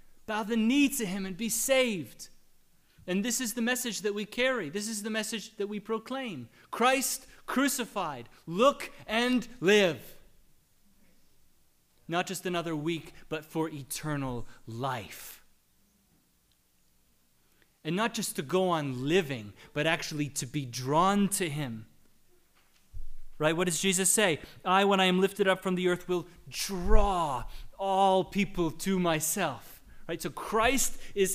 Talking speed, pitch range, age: 140 wpm, 150-210 Hz, 30-49